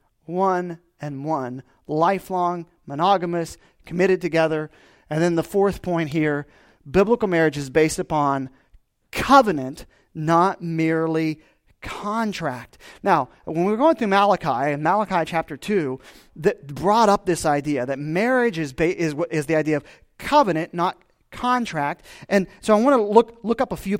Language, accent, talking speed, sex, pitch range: English, American, 150 wpm, male, 155-200 Hz